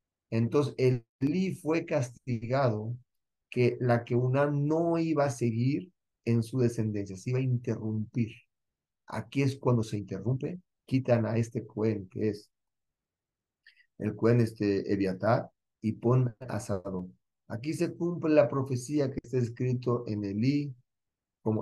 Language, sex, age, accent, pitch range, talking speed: Spanish, male, 40-59, Mexican, 110-140 Hz, 140 wpm